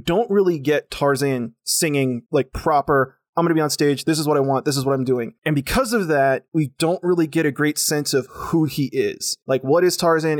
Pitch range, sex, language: 145-205 Hz, male, English